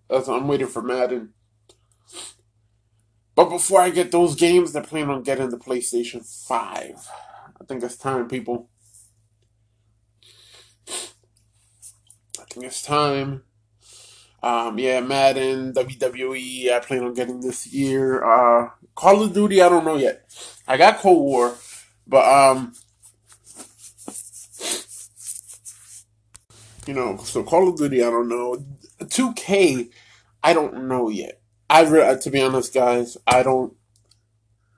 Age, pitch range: 20-39, 110-135 Hz